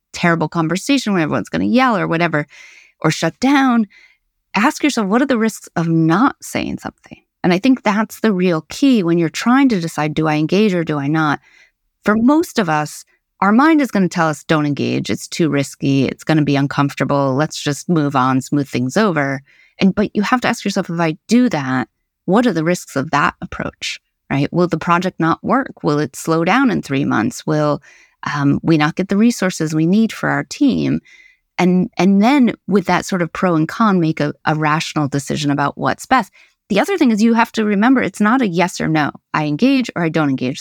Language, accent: Danish, American